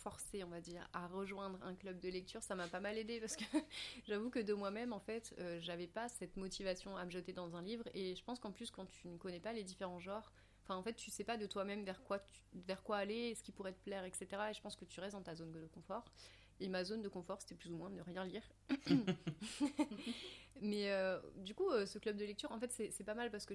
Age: 30-49